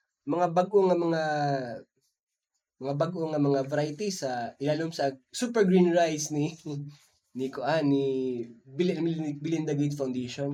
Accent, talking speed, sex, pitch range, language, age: native, 125 wpm, male, 140-180 Hz, Filipino, 20-39